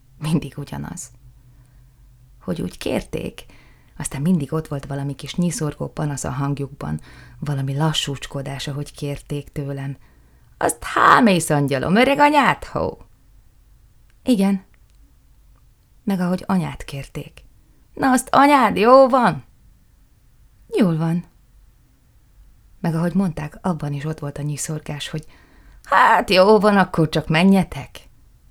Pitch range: 135-175 Hz